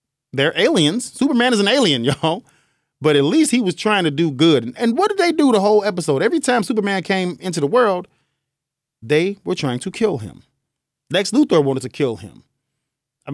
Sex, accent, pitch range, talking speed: male, American, 135-195 Hz, 200 wpm